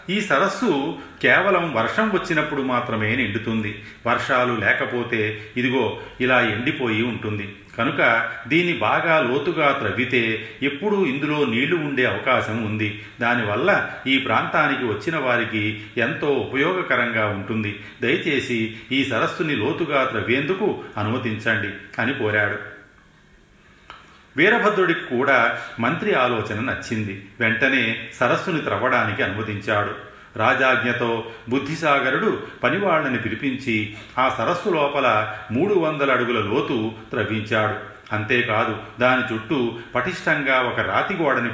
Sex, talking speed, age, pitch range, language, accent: male, 95 wpm, 40-59, 105-130 Hz, Telugu, native